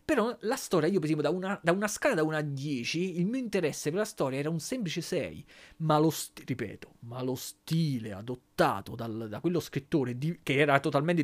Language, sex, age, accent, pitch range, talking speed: Italian, male, 30-49, native, 130-185 Hz, 215 wpm